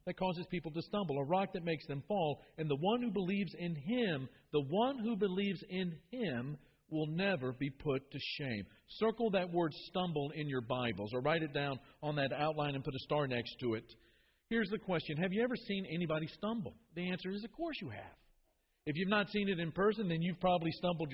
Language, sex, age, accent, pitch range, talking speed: English, male, 50-69, American, 150-205 Hz, 220 wpm